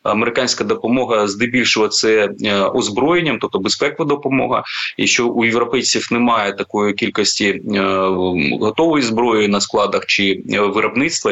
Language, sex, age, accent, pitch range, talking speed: Ukrainian, male, 20-39, native, 100-120 Hz, 110 wpm